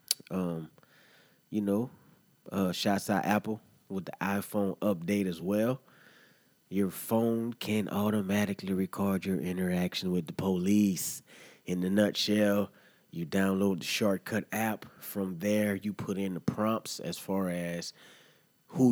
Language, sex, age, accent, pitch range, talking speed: English, male, 30-49, American, 95-110 Hz, 135 wpm